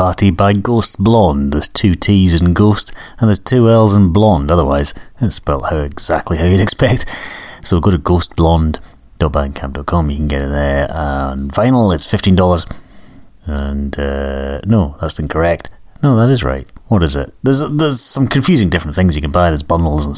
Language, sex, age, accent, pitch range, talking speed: English, male, 30-49, British, 80-105 Hz, 180 wpm